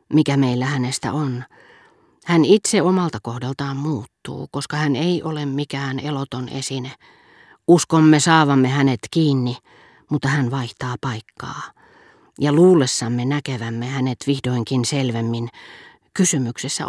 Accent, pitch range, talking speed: native, 125-150 Hz, 110 wpm